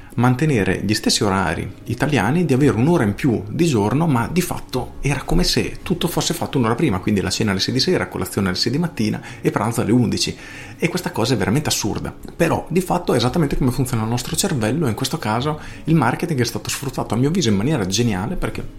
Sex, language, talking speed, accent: male, Italian, 225 wpm, native